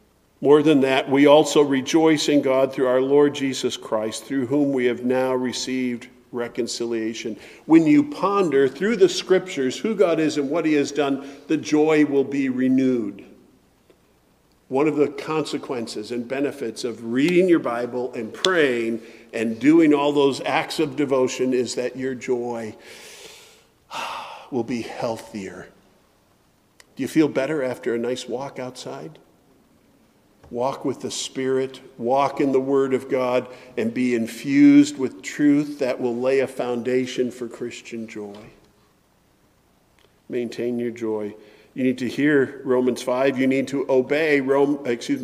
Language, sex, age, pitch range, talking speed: English, male, 50-69, 125-155 Hz, 150 wpm